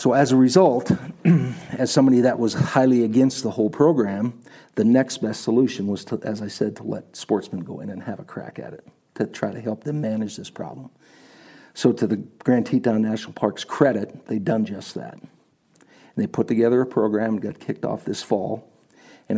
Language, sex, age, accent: English, male, 50-69, American